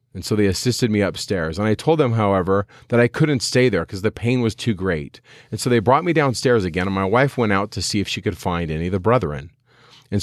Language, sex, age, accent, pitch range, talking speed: English, male, 40-59, American, 90-125 Hz, 265 wpm